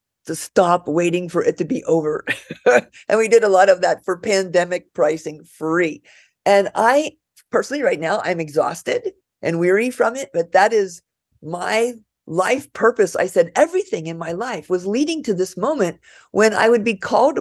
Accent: American